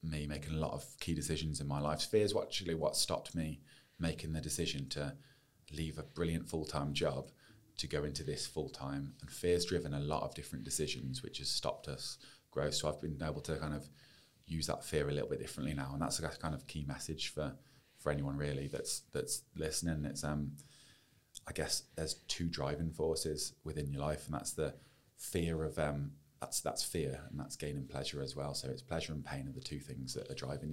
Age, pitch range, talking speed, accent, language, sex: 30-49, 70-80 Hz, 215 wpm, British, English, male